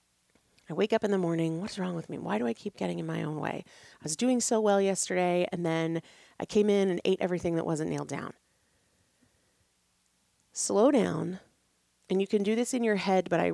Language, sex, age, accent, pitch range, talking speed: English, female, 30-49, American, 160-200 Hz, 215 wpm